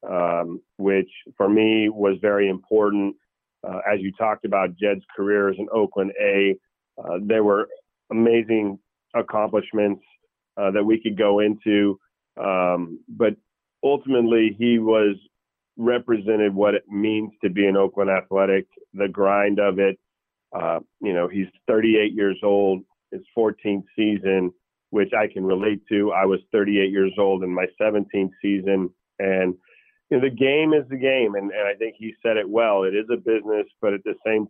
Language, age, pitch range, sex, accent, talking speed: English, 40-59, 100-110 Hz, male, American, 165 wpm